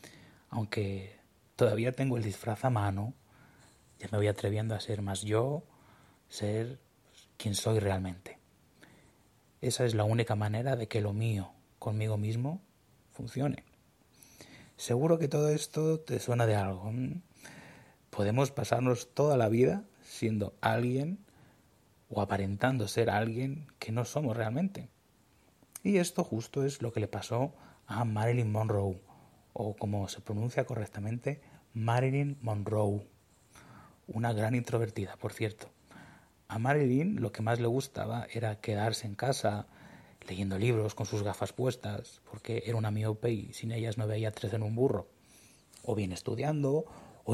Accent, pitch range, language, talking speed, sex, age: Spanish, 105-130 Hz, Spanish, 140 wpm, male, 30-49